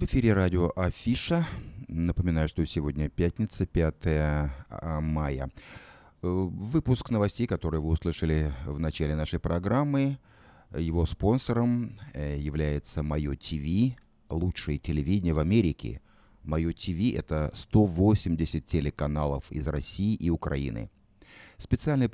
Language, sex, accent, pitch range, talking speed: Russian, male, native, 75-100 Hz, 105 wpm